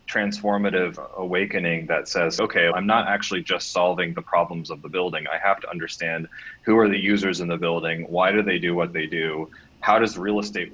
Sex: male